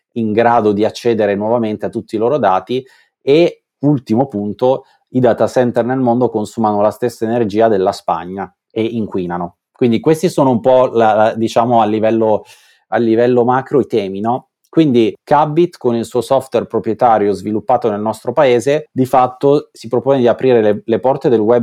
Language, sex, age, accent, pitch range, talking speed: Italian, male, 30-49, native, 105-125 Hz, 170 wpm